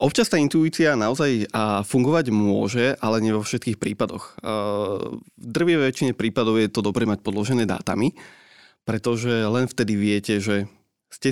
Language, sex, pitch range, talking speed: Slovak, male, 110-130 Hz, 150 wpm